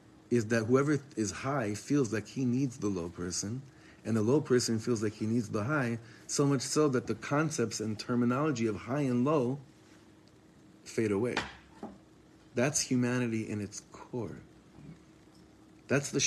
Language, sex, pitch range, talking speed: English, male, 105-135 Hz, 160 wpm